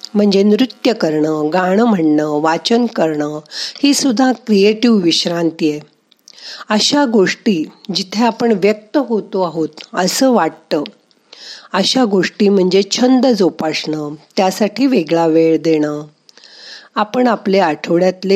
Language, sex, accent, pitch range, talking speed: Marathi, female, native, 165-225 Hz, 85 wpm